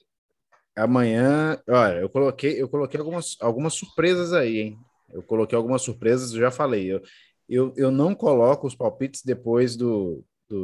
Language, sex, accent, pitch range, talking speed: Portuguese, male, Brazilian, 110-165 Hz, 160 wpm